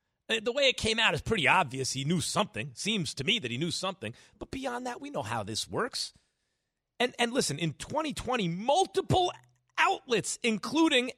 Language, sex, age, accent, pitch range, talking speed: English, male, 40-59, American, 140-230 Hz, 180 wpm